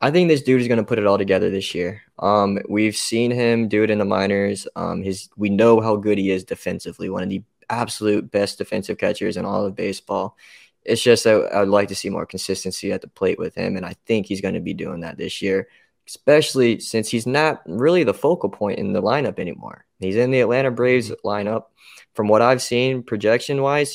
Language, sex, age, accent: English, male, 20-39, American